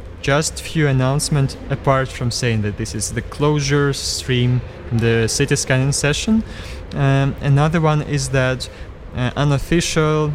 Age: 20-39